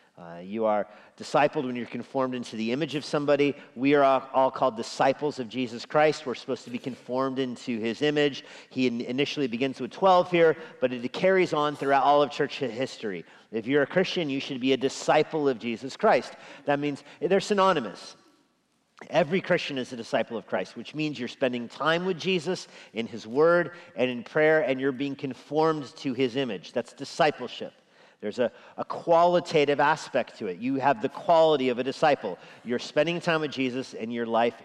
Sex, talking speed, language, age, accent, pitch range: male, 190 wpm, English, 50-69, American, 120-155 Hz